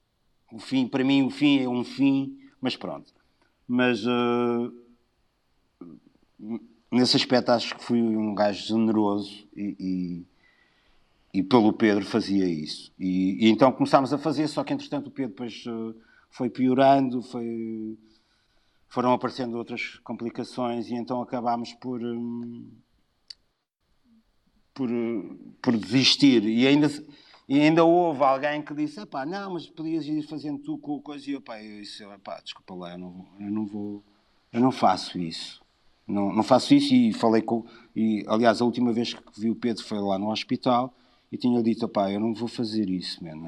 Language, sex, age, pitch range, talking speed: Portuguese, male, 50-69, 110-140 Hz, 165 wpm